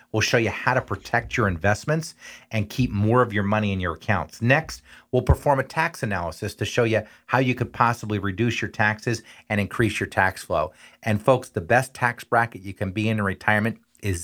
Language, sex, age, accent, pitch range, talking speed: English, male, 40-59, American, 100-120 Hz, 215 wpm